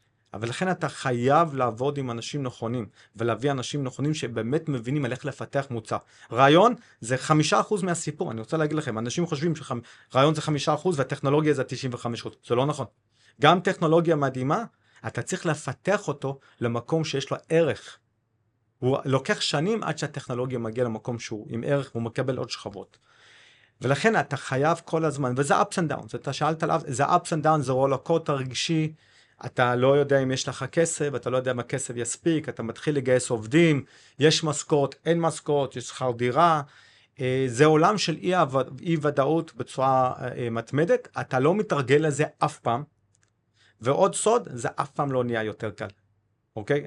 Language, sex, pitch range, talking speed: Hebrew, male, 120-155 Hz, 165 wpm